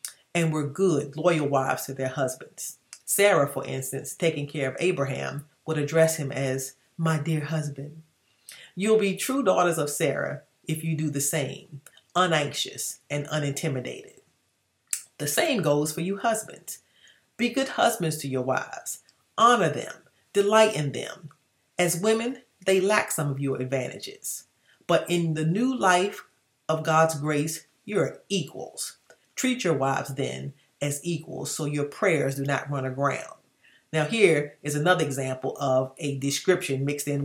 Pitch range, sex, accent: 140-185 Hz, female, American